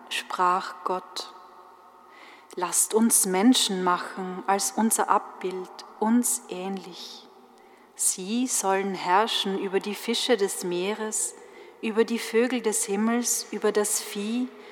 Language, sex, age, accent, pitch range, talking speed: German, female, 40-59, German, 185-245 Hz, 110 wpm